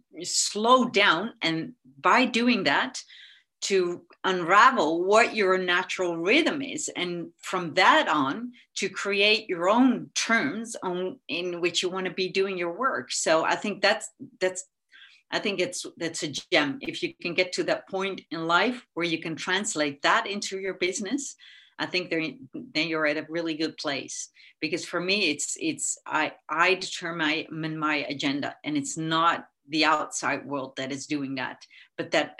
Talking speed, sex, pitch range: 170 wpm, female, 155-200 Hz